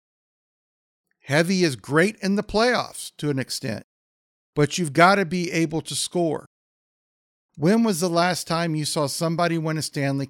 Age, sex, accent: 50-69, male, American